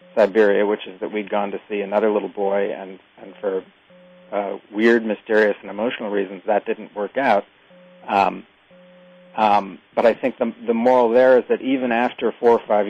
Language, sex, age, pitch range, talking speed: English, male, 40-59, 110-140 Hz, 185 wpm